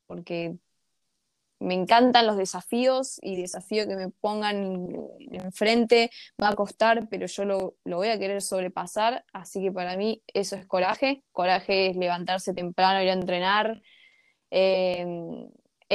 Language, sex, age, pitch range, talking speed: Spanish, female, 20-39, 190-235 Hz, 140 wpm